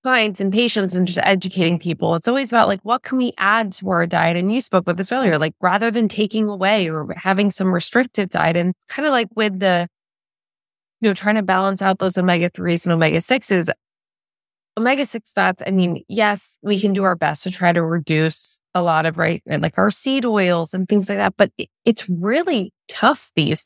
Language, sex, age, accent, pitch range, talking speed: English, female, 20-39, American, 165-195 Hz, 210 wpm